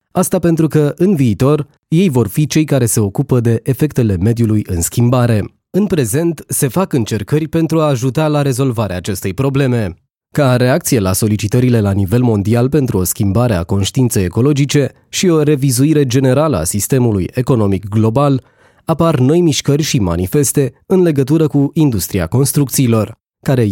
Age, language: 20-39, Romanian